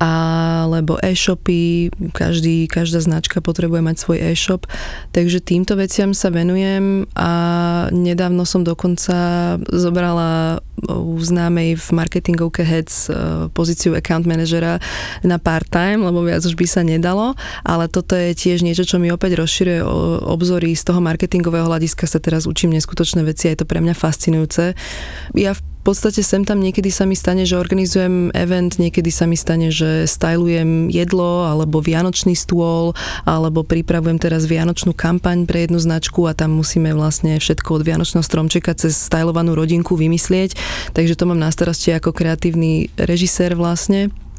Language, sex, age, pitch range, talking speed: Slovak, female, 20-39, 165-180 Hz, 150 wpm